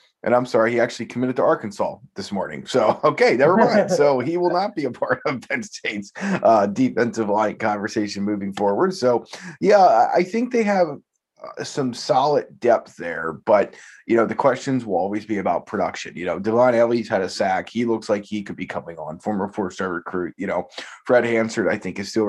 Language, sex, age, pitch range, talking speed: English, male, 20-39, 105-125 Hz, 205 wpm